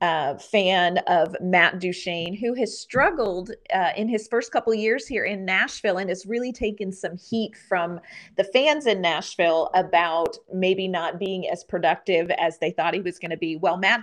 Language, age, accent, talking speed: English, 30-49, American, 190 wpm